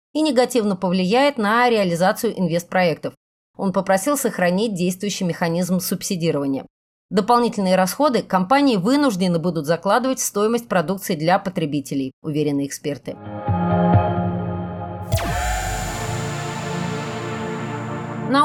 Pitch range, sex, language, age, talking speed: 170-230 Hz, female, Russian, 30-49, 85 wpm